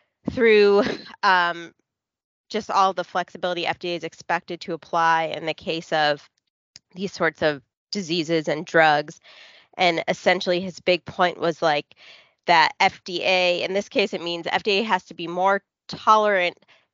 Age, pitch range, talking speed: 20-39, 160-190 Hz, 145 wpm